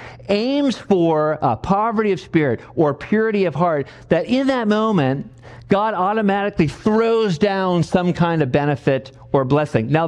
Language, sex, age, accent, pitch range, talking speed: English, male, 50-69, American, 135-215 Hz, 150 wpm